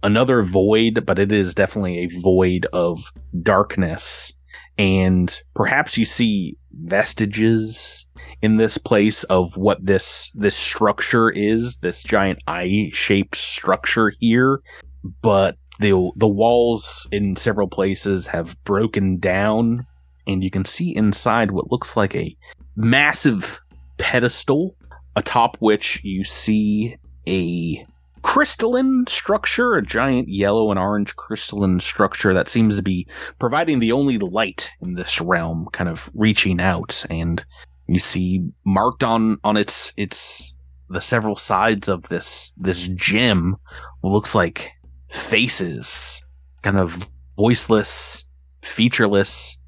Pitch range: 80-110 Hz